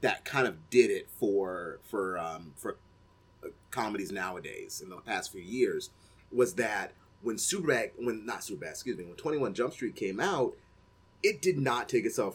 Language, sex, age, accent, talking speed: English, male, 30-49, American, 175 wpm